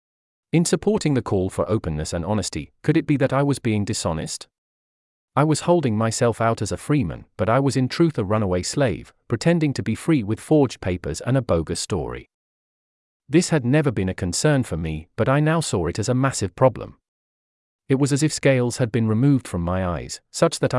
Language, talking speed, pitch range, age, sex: English, 210 wpm, 90-140 Hz, 40-59, male